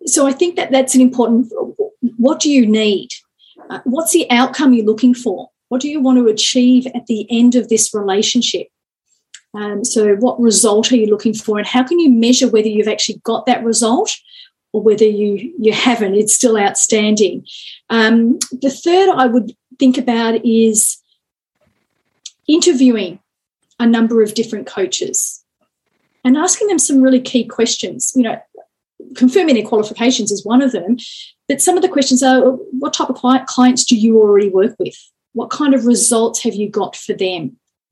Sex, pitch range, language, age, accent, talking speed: female, 215-255 Hz, English, 40-59, Australian, 175 wpm